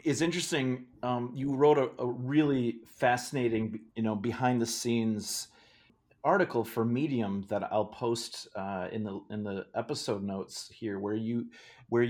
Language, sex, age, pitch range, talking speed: English, male, 30-49, 110-125 Hz, 155 wpm